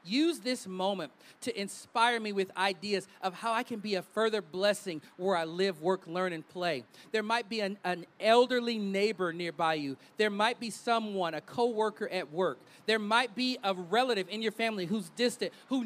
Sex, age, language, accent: male, 40-59, English, American